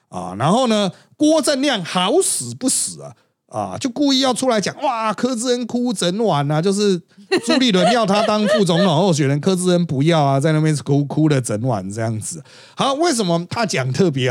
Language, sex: Chinese, male